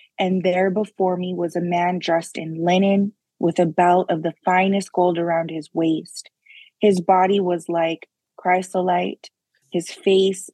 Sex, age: female, 20-39